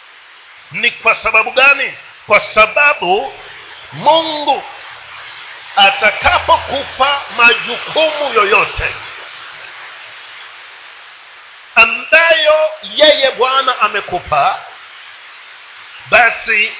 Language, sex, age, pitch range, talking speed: Swahili, male, 50-69, 210-290 Hz, 55 wpm